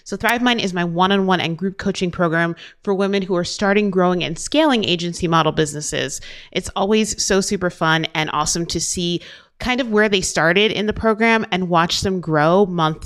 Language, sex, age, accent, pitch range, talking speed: English, female, 30-49, American, 160-200 Hz, 195 wpm